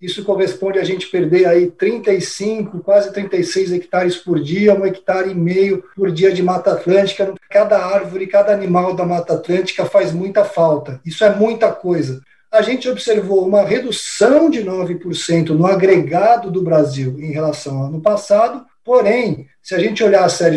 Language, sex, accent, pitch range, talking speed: Portuguese, male, Brazilian, 180-205 Hz, 165 wpm